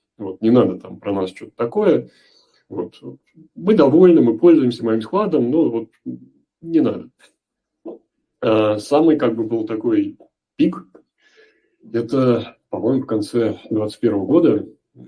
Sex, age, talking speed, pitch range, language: male, 30-49, 125 wpm, 105-150 Hz, Russian